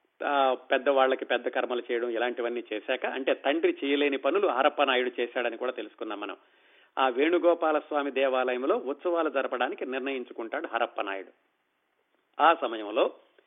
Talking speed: 105 wpm